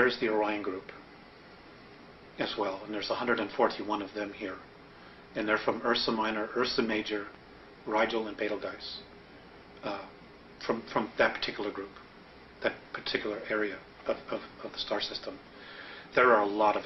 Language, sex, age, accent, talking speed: Dutch, male, 40-59, American, 150 wpm